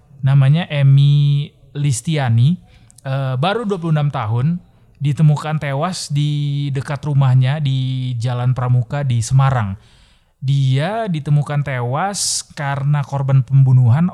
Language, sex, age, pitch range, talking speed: Indonesian, male, 20-39, 120-145 Hz, 95 wpm